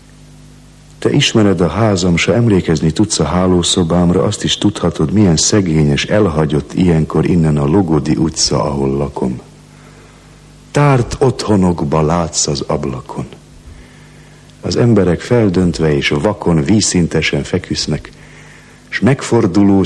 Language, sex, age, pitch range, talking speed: English, male, 60-79, 75-95 Hz, 110 wpm